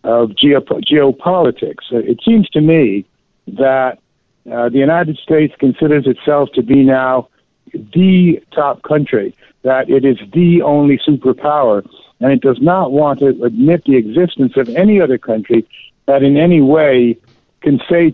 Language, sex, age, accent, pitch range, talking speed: English, male, 60-79, American, 130-165 Hz, 145 wpm